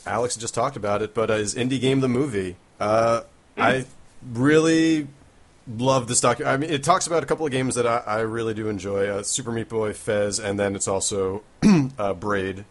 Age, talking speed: 30-49, 210 wpm